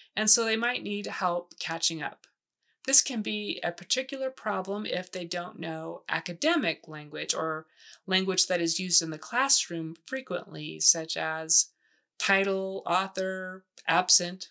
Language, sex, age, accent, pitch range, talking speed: English, female, 20-39, American, 170-215 Hz, 140 wpm